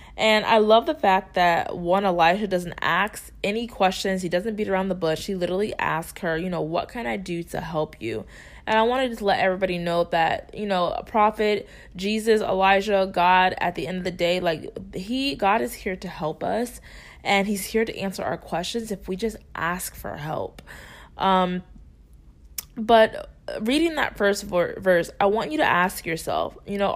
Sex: female